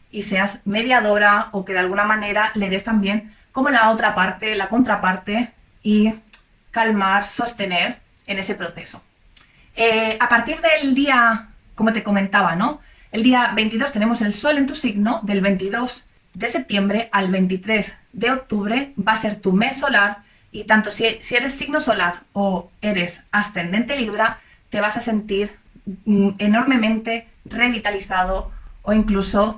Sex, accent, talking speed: female, Spanish, 150 wpm